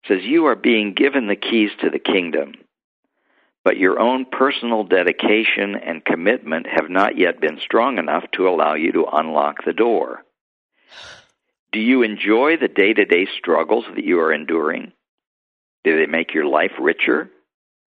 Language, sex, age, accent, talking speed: English, male, 60-79, American, 160 wpm